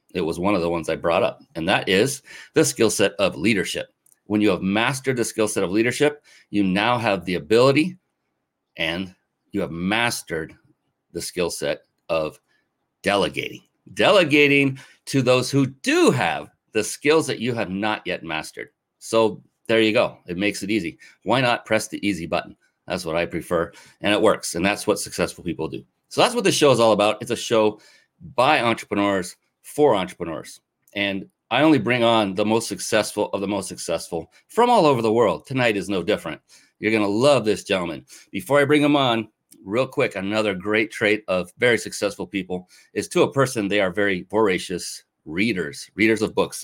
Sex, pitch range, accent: male, 95-125 Hz, American